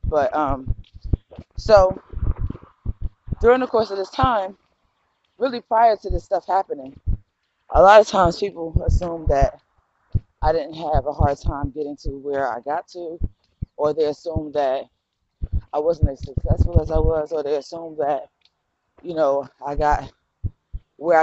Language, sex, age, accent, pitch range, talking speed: English, female, 20-39, American, 110-180 Hz, 155 wpm